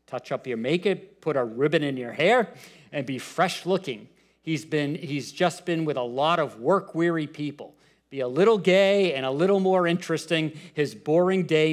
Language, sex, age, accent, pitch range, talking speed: English, male, 50-69, American, 135-175 Hz, 185 wpm